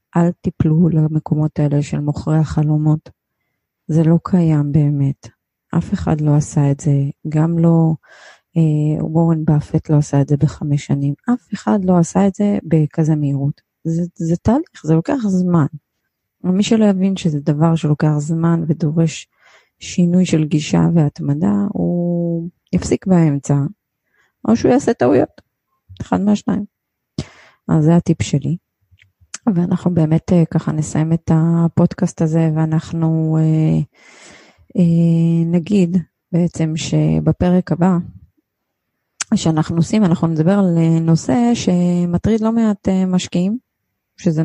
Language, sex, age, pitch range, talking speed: Hebrew, female, 30-49, 155-180 Hz, 120 wpm